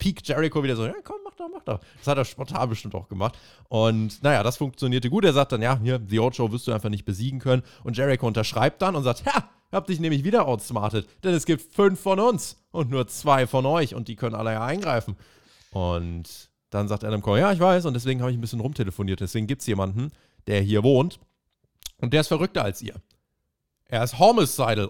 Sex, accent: male, German